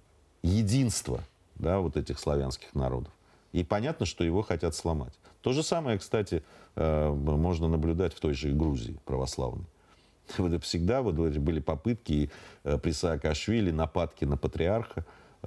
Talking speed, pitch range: 130 wpm, 75-95 Hz